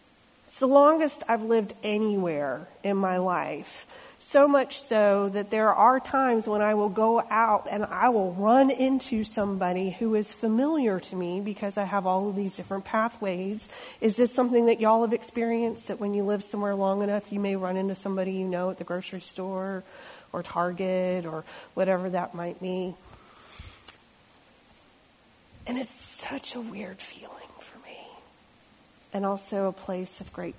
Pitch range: 190-230 Hz